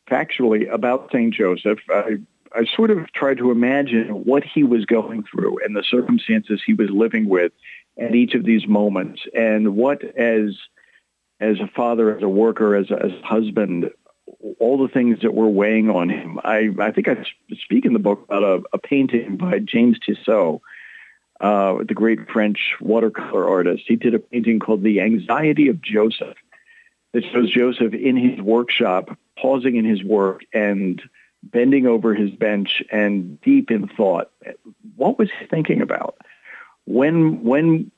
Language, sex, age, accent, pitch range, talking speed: English, male, 50-69, American, 105-130 Hz, 165 wpm